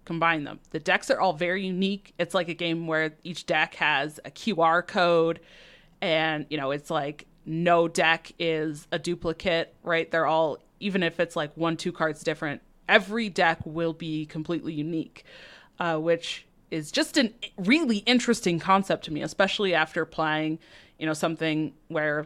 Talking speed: 170 wpm